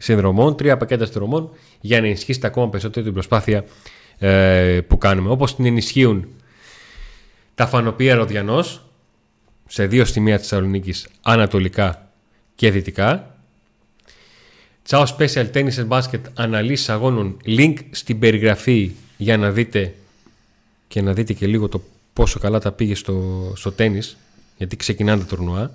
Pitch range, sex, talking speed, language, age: 100-125 Hz, male, 130 wpm, Greek, 30-49